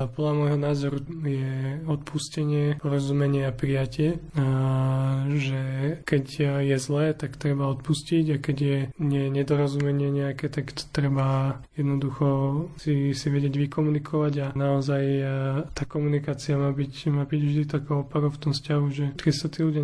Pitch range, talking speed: 140-150 Hz, 145 wpm